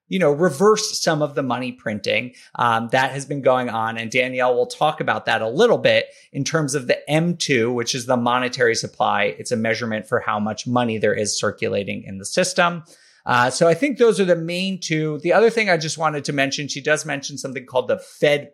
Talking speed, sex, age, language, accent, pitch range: 225 wpm, male, 30-49, English, American, 125-175 Hz